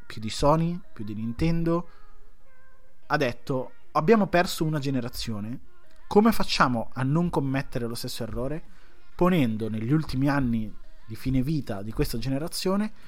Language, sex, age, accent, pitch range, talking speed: Italian, male, 20-39, native, 120-160 Hz, 140 wpm